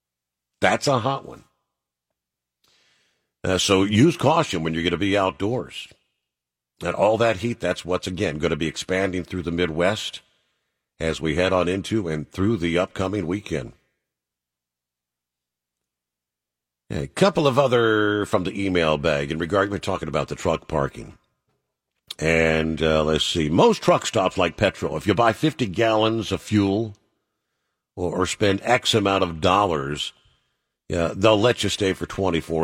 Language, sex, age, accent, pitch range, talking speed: English, male, 50-69, American, 70-105 Hz, 155 wpm